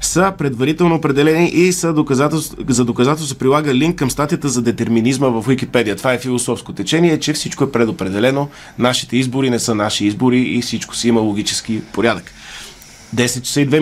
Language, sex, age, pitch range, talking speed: Bulgarian, male, 20-39, 125-155 Hz, 170 wpm